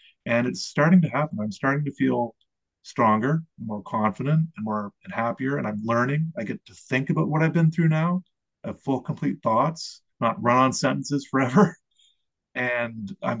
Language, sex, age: English, male, 30-49